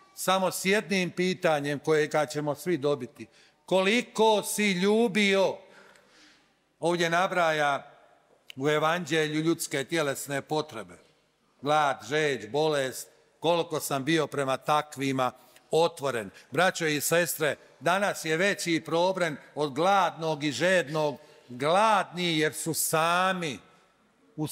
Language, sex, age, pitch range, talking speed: Croatian, male, 50-69, 145-180 Hz, 110 wpm